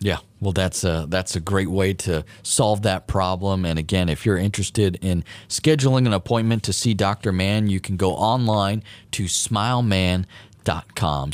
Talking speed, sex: 165 wpm, male